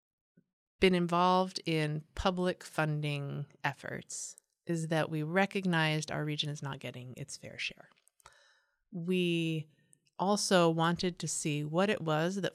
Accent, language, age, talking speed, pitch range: American, English, 30-49, 130 wpm, 150-185 Hz